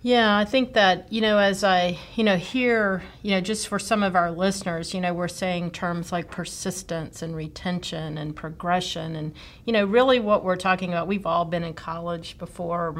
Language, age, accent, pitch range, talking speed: English, 40-59, American, 165-190 Hz, 205 wpm